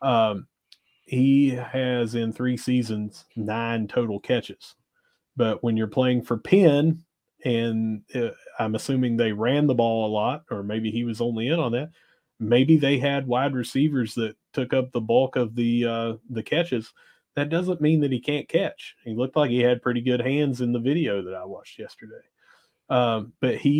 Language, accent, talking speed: English, American, 185 wpm